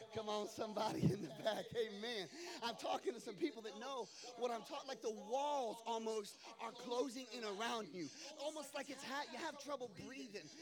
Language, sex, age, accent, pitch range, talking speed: English, male, 30-49, American, 210-285 Hz, 200 wpm